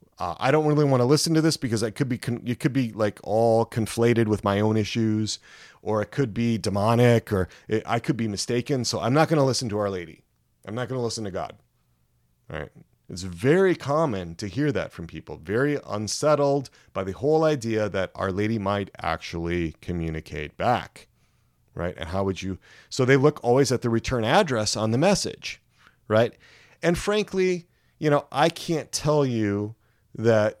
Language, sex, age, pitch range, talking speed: English, male, 30-49, 95-140 Hz, 185 wpm